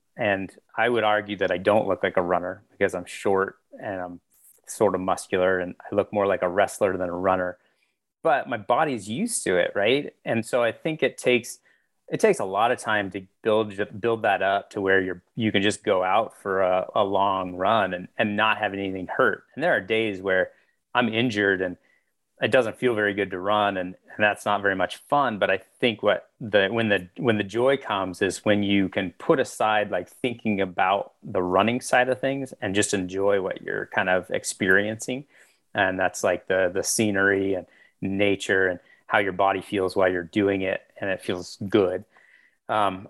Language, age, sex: English, 30-49, male